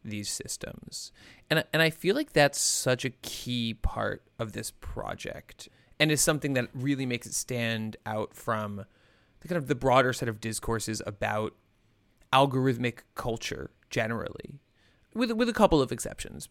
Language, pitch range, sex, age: English, 110-135 Hz, male, 30-49